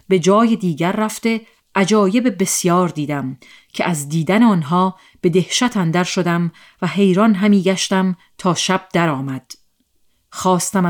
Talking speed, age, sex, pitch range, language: 125 wpm, 40-59, female, 165-205 Hz, Persian